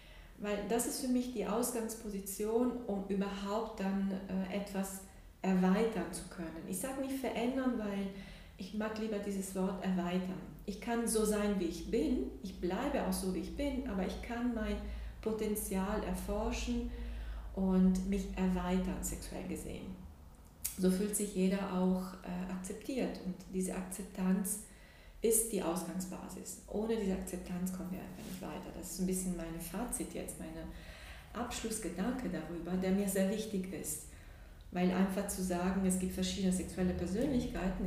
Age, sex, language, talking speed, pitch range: 40-59, female, German, 150 wpm, 185-225 Hz